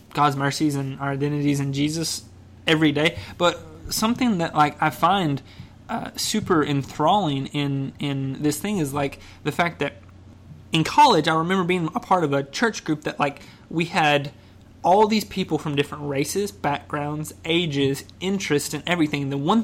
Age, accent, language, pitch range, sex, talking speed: 20-39, American, English, 140-170 Hz, male, 170 wpm